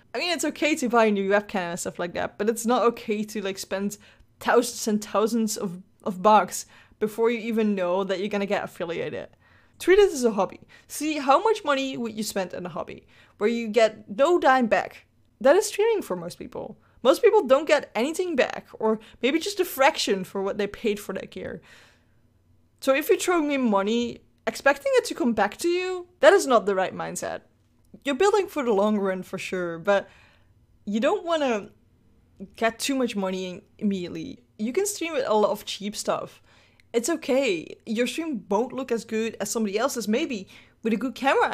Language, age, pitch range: English, 20-39, 200-275 Hz